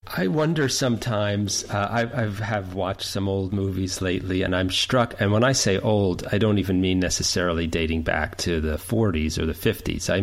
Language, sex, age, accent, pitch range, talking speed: English, male, 40-59, American, 90-110 Hz, 195 wpm